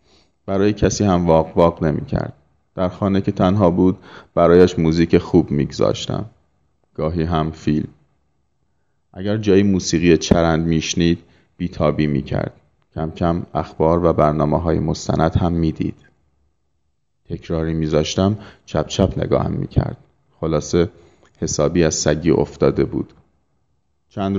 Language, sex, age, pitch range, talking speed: Persian, male, 30-49, 80-95 Hz, 135 wpm